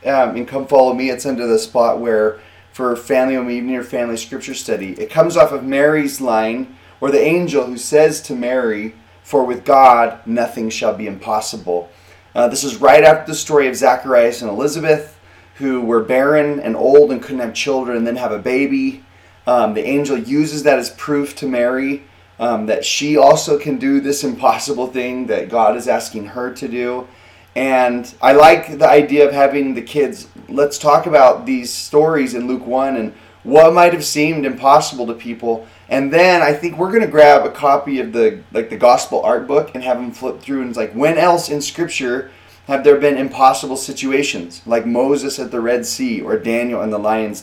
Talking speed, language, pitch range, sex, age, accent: 195 wpm, English, 115-145 Hz, male, 30-49, American